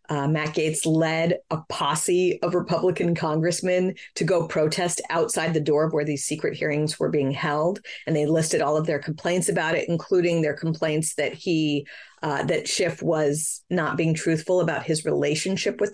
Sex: female